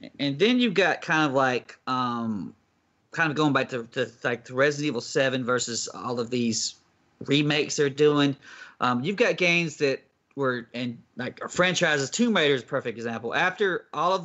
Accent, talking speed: American, 190 wpm